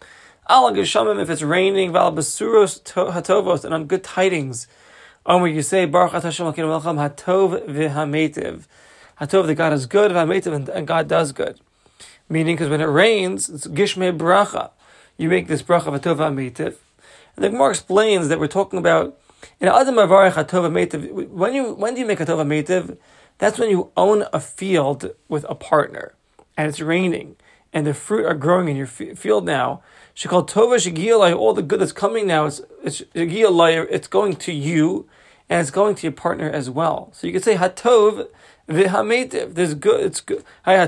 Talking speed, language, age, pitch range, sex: 155 wpm, English, 30-49, 155-200 Hz, male